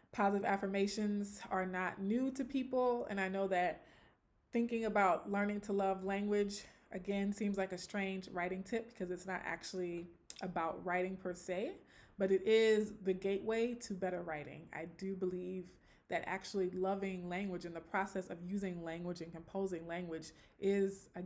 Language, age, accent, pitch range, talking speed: English, 20-39, American, 180-205 Hz, 165 wpm